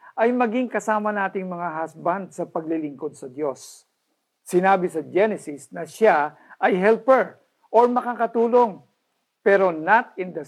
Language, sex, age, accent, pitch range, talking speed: Filipino, male, 50-69, native, 160-225 Hz, 130 wpm